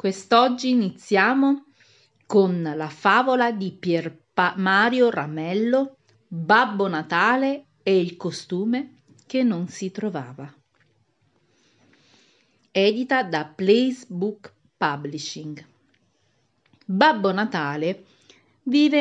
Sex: female